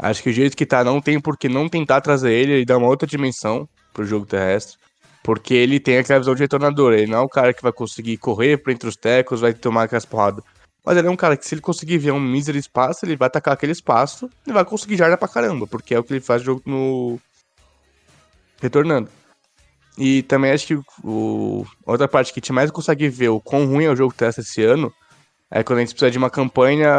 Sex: male